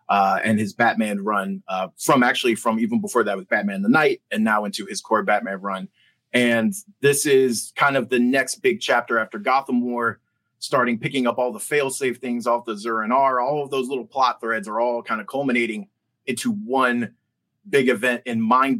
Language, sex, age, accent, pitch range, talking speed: English, male, 30-49, American, 120-150 Hz, 200 wpm